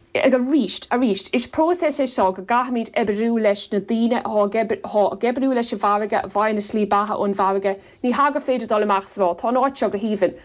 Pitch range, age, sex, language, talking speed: 195-250 Hz, 30-49, female, English, 125 wpm